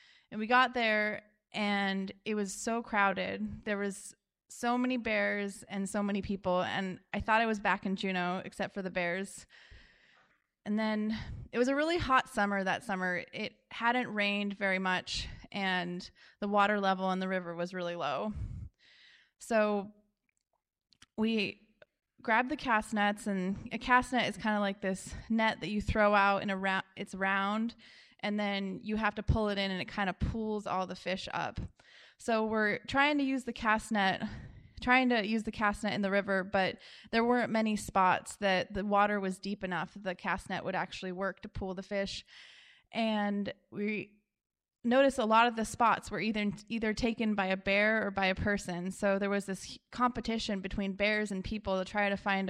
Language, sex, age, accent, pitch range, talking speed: English, female, 20-39, American, 190-220 Hz, 190 wpm